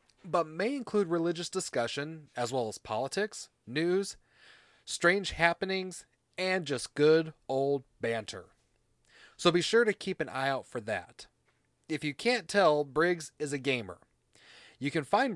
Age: 30-49